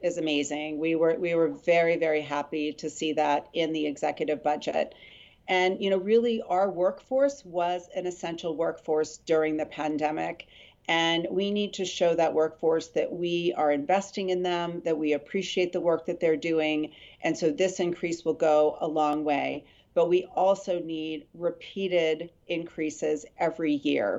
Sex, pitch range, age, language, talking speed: female, 155-180 Hz, 40-59, English, 165 wpm